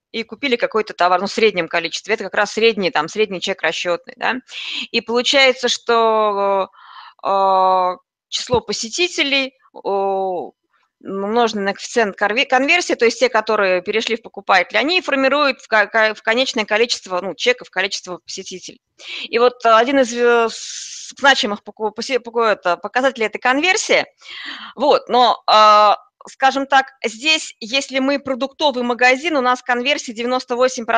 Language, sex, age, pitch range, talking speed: Russian, female, 20-39, 205-260 Hz, 120 wpm